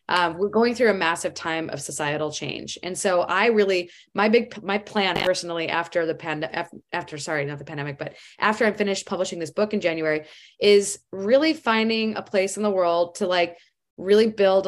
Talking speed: 195 wpm